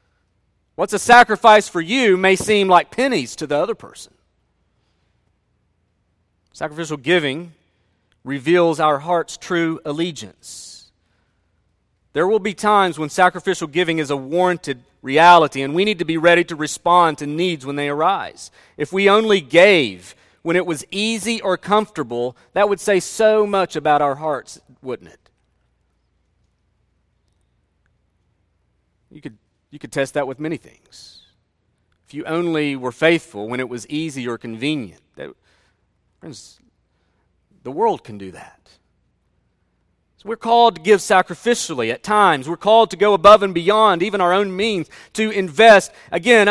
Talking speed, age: 145 wpm, 40-59